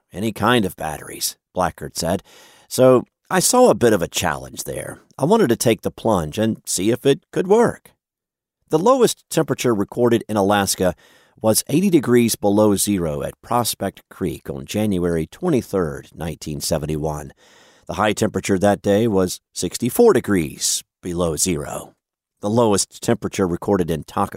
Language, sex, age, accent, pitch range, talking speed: English, male, 50-69, American, 90-120 Hz, 150 wpm